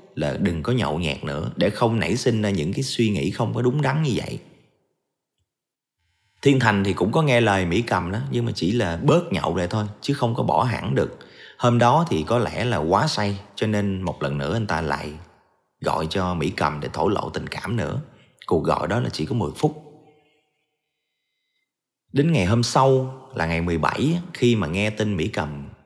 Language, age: Vietnamese, 30-49